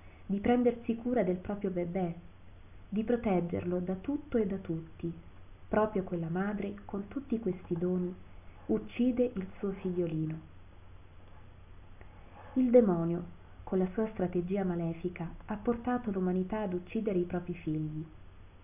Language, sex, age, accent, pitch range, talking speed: Italian, female, 30-49, native, 155-200 Hz, 125 wpm